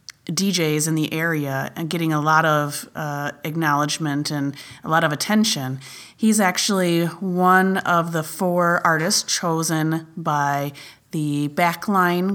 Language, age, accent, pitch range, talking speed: English, 30-49, American, 150-170 Hz, 130 wpm